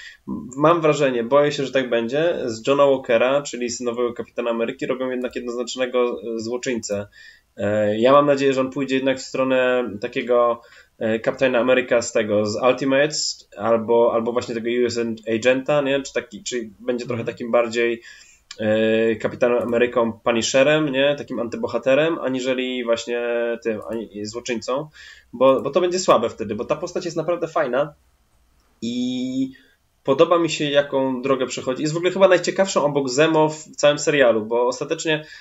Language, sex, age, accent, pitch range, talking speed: Polish, male, 20-39, native, 120-145 Hz, 150 wpm